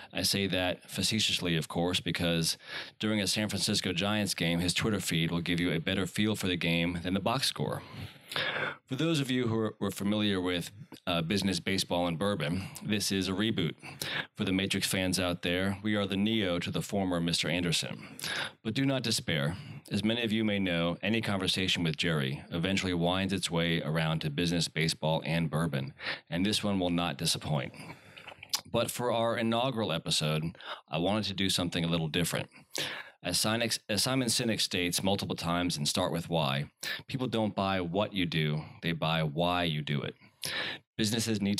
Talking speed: 185 wpm